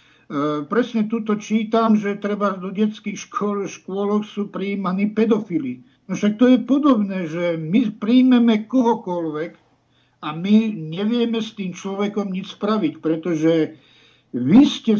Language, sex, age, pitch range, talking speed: Czech, male, 60-79, 165-215 Hz, 130 wpm